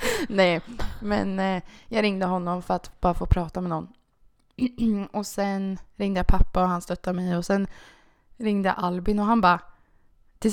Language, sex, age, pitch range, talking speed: Swedish, female, 20-39, 190-255 Hz, 170 wpm